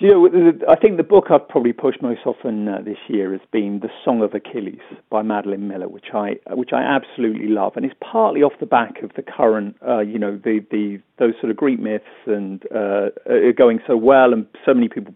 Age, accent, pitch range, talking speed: 40-59, British, 105-160 Hz, 235 wpm